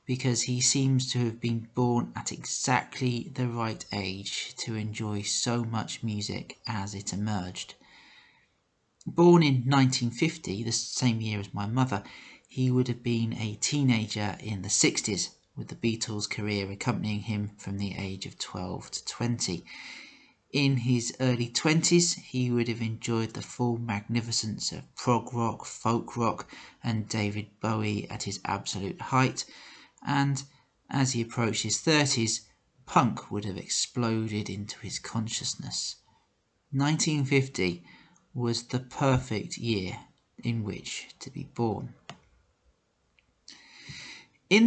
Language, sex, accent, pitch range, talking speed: English, male, British, 105-130 Hz, 130 wpm